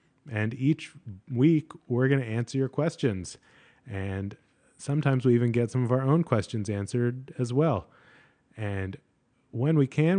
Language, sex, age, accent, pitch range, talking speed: English, male, 30-49, American, 100-130 Hz, 155 wpm